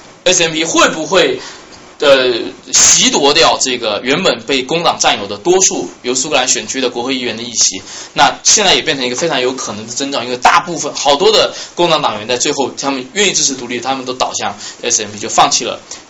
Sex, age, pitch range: male, 20-39, 115-160 Hz